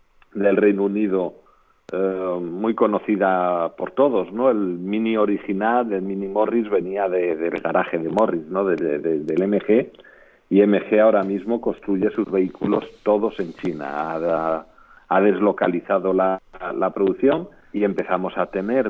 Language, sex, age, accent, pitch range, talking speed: Spanish, male, 50-69, Spanish, 95-120 Hz, 150 wpm